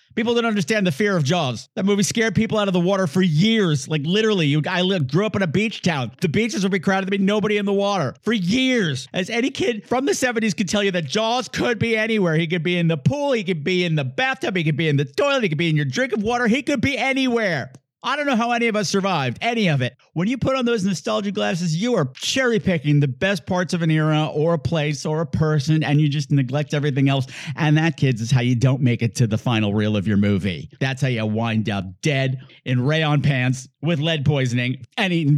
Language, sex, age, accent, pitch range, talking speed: English, male, 50-69, American, 145-205 Hz, 260 wpm